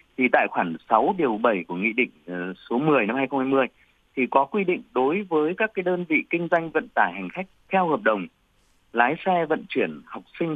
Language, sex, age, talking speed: Vietnamese, male, 30-49, 215 wpm